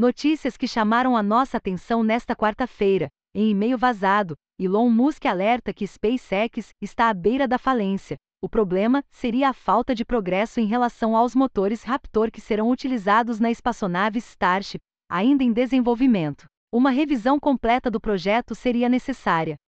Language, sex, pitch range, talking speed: Portuguese, female, 210-255 Hz, 150 wpm